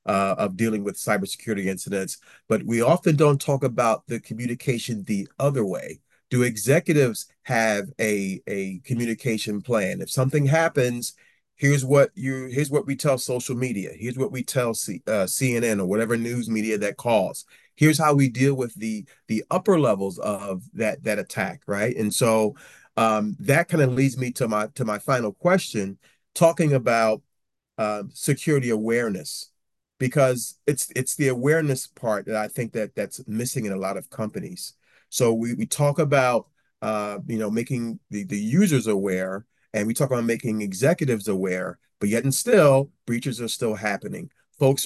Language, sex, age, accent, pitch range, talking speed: English, male, 40-59, American, 110-135 Hz, 170 wpm